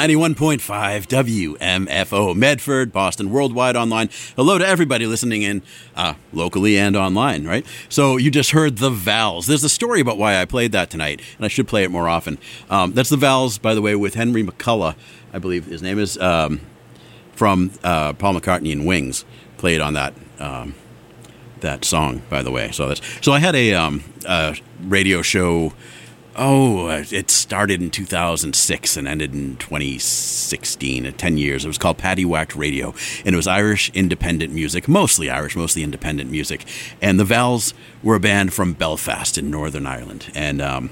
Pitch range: 85-110 Hz